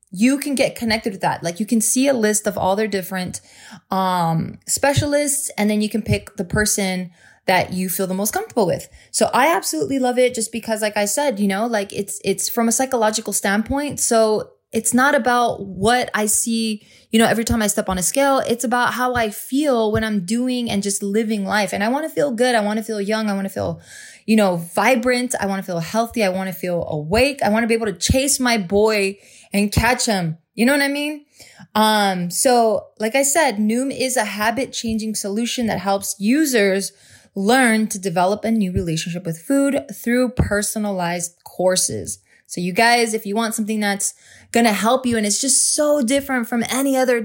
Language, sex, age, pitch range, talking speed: English, female, 20-39, 200-245 Hz, 215 wpm